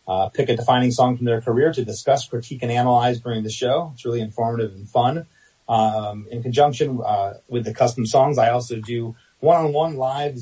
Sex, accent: male, American